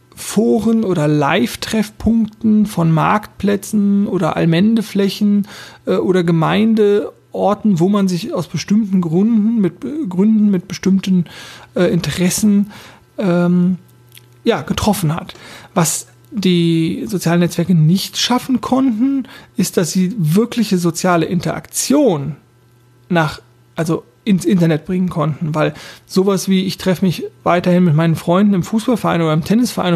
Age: 40-59